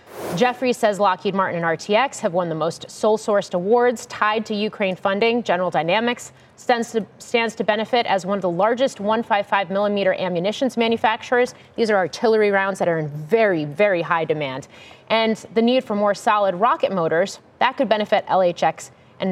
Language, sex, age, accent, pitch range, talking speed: English, female, 30-49, American, 180-235 Hz, 175 wpm